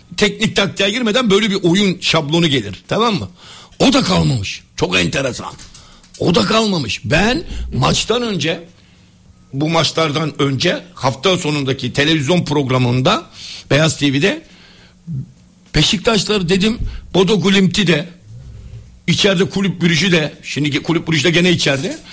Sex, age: male, 60-79